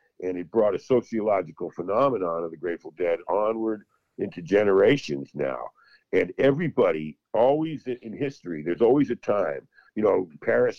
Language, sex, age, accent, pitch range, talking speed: English, male, 50-69, American, 85-145 Hz, 145 wpm